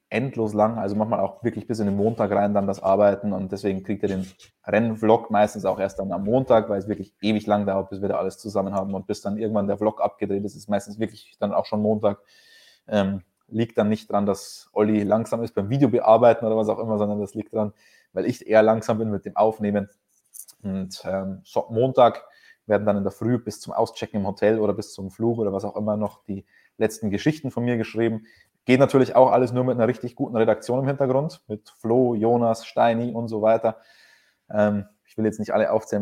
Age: 20-39